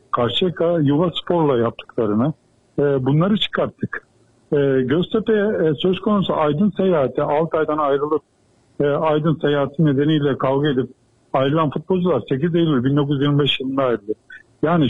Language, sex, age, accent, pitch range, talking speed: Turkish, male, 50-69, native, 135-190 Hz, 100 wpm